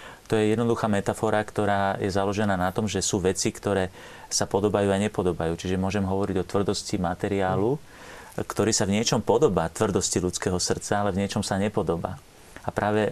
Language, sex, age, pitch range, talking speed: Slovak, male, 40-59, 95-105 Hz, 175 wpm